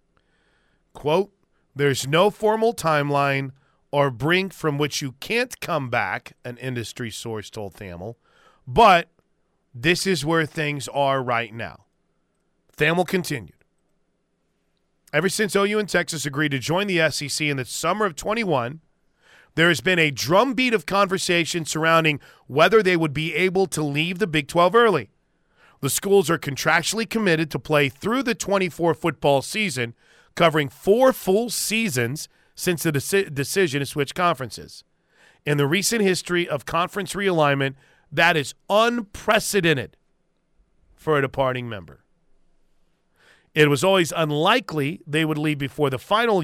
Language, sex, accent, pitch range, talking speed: English, male, American, 140-185 Hz, 140 wpm